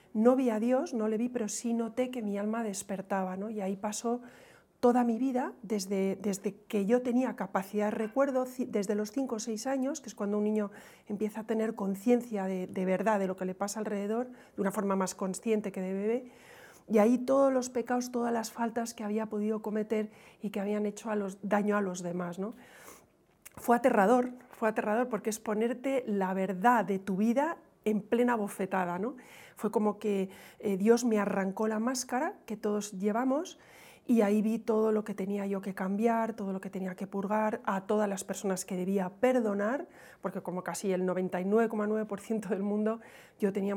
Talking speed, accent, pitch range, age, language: 200 wpm, Spanish, 200-235 Hz, 40-59, Spanish